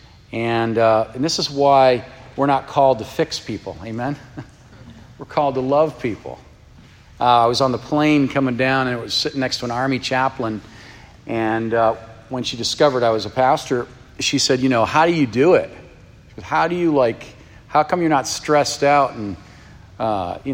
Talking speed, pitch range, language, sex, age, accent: 195 wpm, 115-140 Hz, English, male, 40-59, American